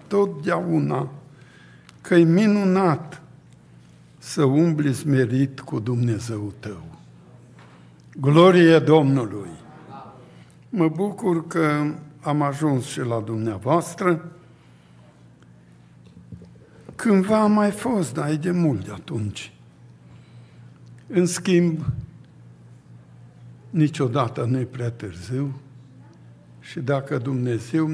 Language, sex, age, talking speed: Romanian, male, 60-79, 85 wpm